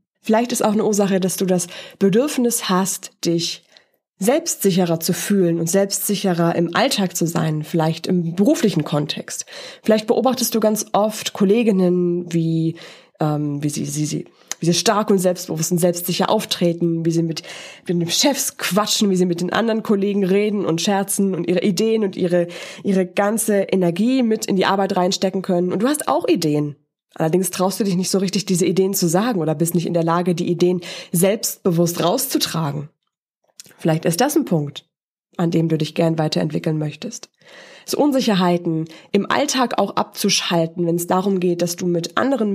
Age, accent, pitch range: 20-39, German, 170-210 Hz